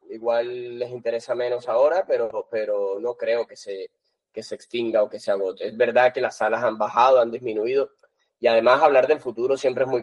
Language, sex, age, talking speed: Spanish, male, 20-39, 210 wpm